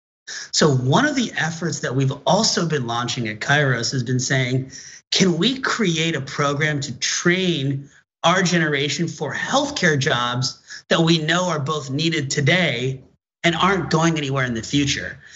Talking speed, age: 160 wpm, 30-49